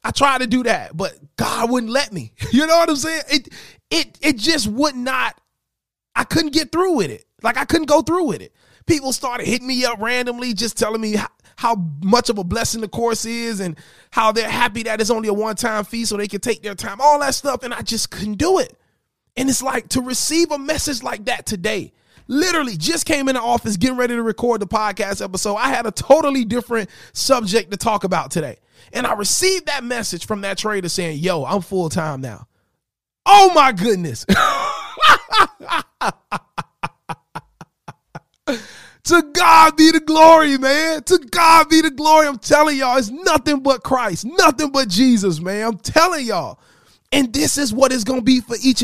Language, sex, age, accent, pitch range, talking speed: English, male, 30-49, American, 215-295 Hz, 200 wpm